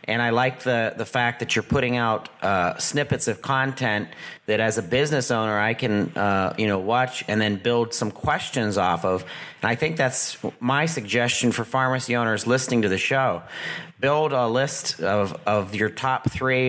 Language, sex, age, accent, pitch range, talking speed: English, male, 40-59, American, 110-130 Hz, 190 wpm